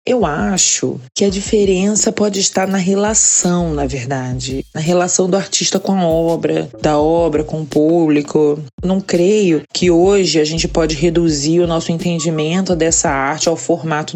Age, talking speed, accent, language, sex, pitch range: 20-39, 160 wpm, Brazilian, Portuguese, female, 160-195 Hz